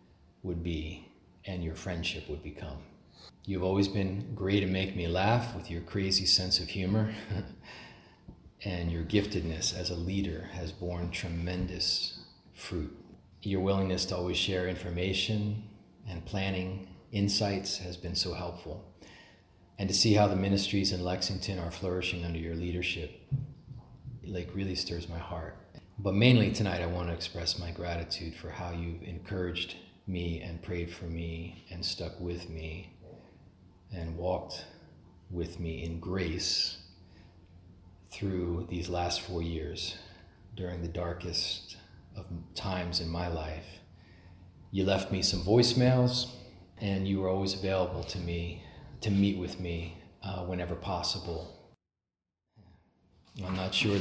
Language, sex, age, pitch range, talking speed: English, male, 40-59, 85-95 Hz, 140 wpm